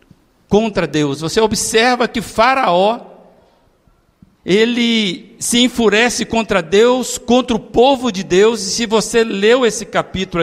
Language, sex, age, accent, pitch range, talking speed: Portuguese, male, 60-79, Brazilian, 165-220 Hz, 125 wpm